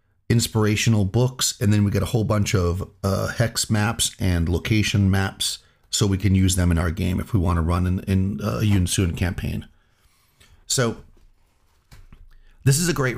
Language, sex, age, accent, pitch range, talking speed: English, male, 30-49, American, 95-120 Hz, 180 wpm